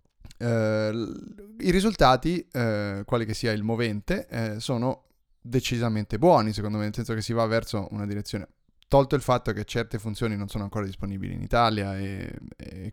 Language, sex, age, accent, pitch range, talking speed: Italian, male, 20-39, native, 105-125 Hz, 160 wpm